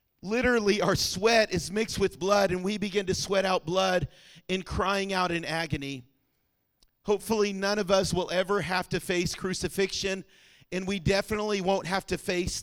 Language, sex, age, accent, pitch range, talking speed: English, male, 40-59, American, 175-220 Hz, 170 wpm